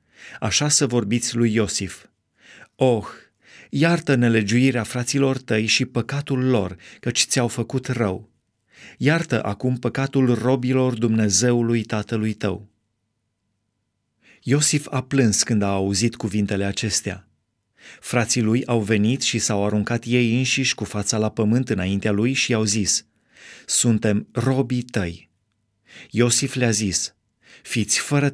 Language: Romanian